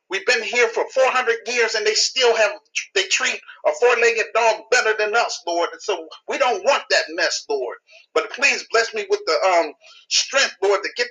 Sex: male